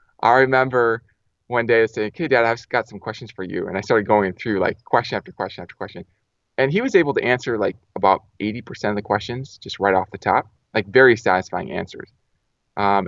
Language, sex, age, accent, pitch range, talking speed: English, male, 20-39, American, 95-120 Hz, 215 wpm